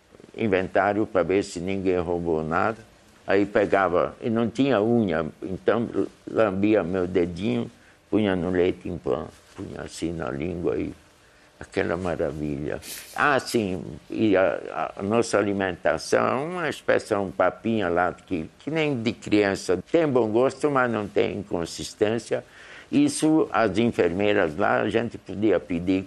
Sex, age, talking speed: male, 60-79, 140 wpm